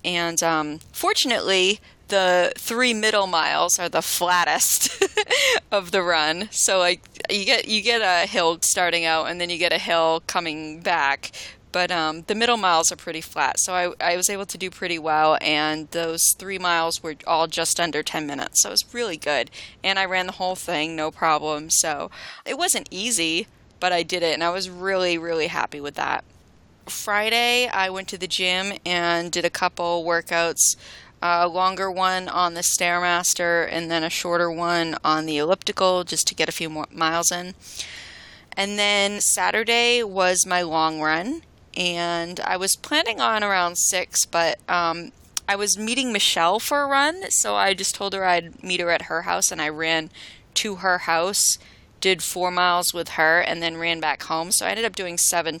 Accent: American